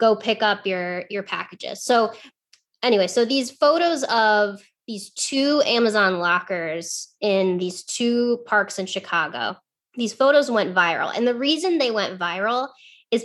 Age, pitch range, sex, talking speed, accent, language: 20-39, 205-255 Hz, female, 150 wpm, American, English